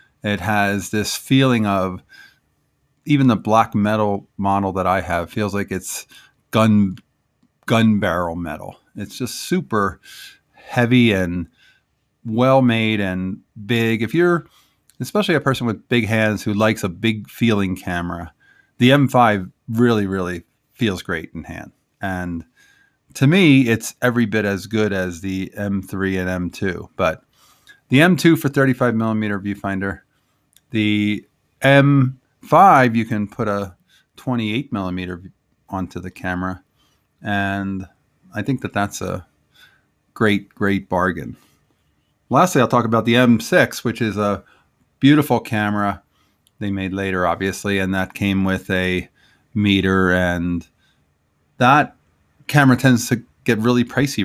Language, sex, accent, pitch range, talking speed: English, male, American, 95-120 Hz, 135 wpm